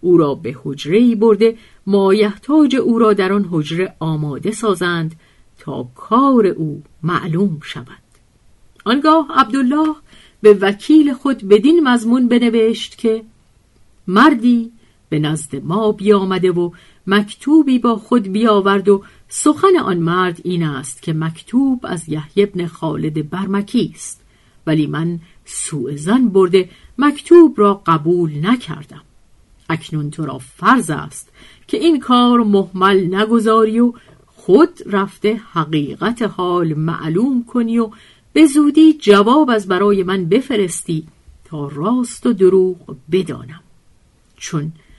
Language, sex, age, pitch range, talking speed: Persian, female, 50-69, 160-240 Hz, 120 wpm